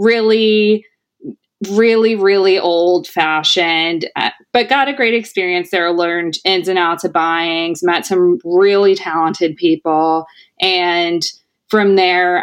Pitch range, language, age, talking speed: 175-200 Hz, English, 20-39, 125 wpm